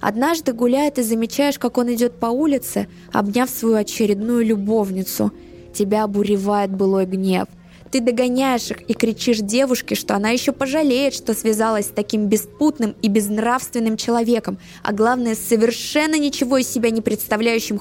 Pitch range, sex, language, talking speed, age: 195-245 Hz, female, Russian, 150 wpm, 20-39